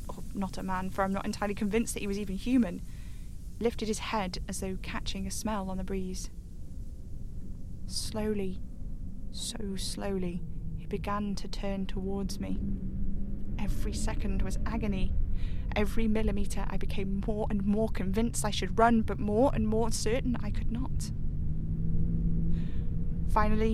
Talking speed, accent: 145 wpm, British